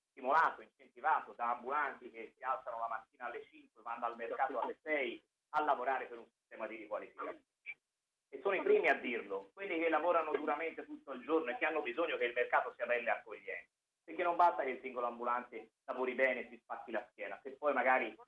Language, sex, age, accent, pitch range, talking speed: Italian, male, 30-49, native, 130-200 Hz, 215 wpm